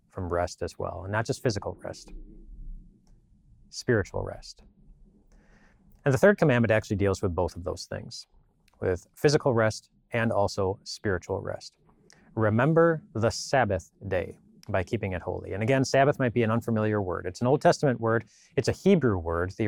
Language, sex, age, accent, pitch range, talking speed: English, male, 30-49, American, 100-125 Hz, 170 wpm